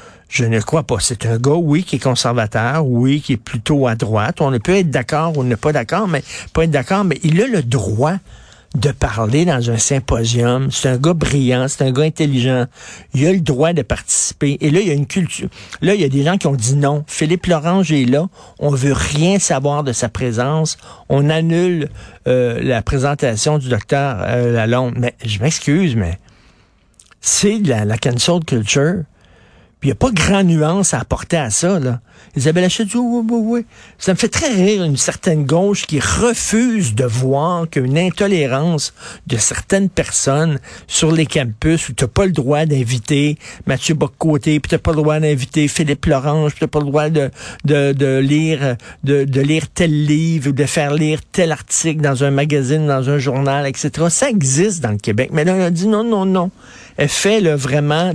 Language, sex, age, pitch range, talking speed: French, male, 60-79, 130-165 Hz, 205 wpm